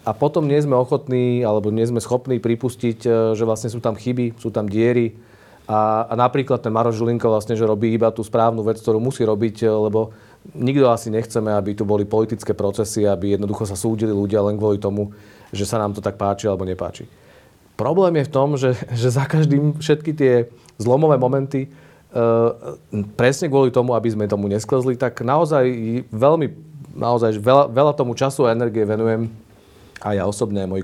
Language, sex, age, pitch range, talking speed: Slovak, male, 40-59, 105-130 Hz, 185 wpm